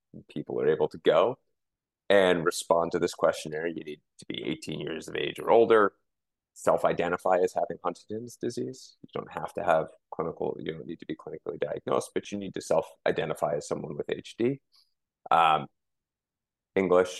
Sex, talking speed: male, 170 wpm